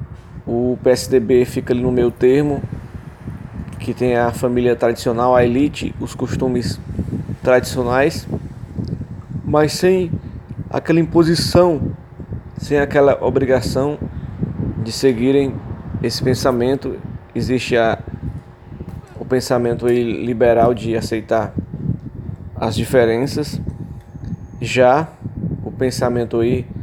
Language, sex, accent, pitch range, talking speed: English, male, Brazilian, 120-140 Hz, 85 wpm